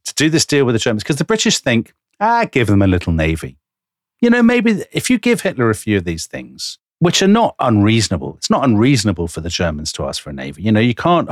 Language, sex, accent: English, male, British